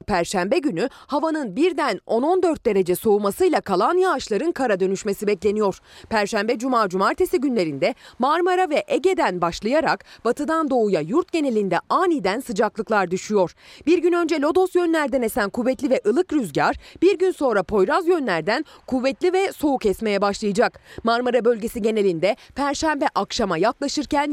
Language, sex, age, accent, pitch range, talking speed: Turkish, female, 30-49, native, 205-315 Hz, 130 wpm